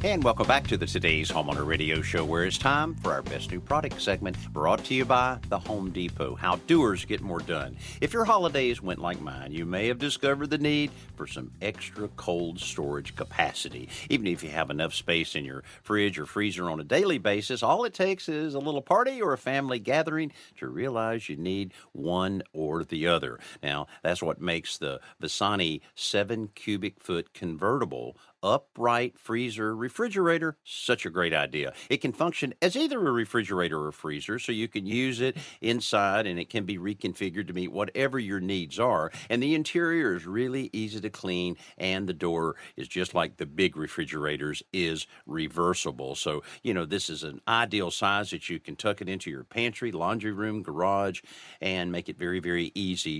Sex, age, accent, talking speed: male, 50-69, American, 190 wpm